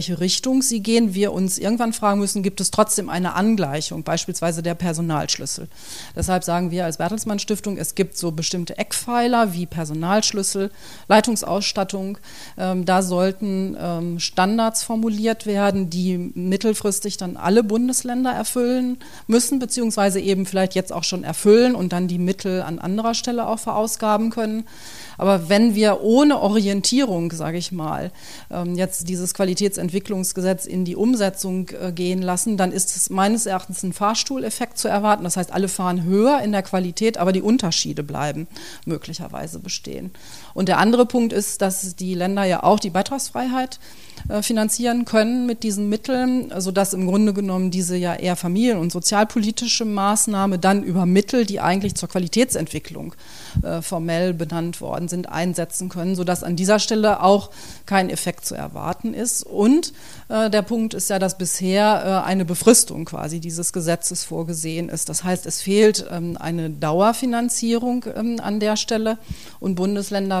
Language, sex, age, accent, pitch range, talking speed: German, female, 40-59, German, 180-220 Hz, 150 wpm